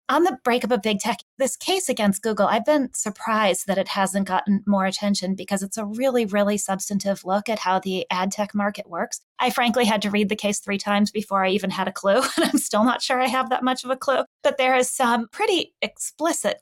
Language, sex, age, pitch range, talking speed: English, female, 30-49, 190-230 Hz, 240 wpm